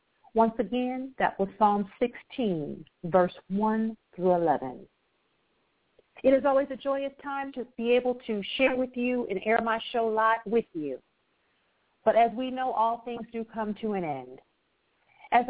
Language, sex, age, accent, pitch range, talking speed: English, female, 50-69, American, 205-245 Hz, 165 wpm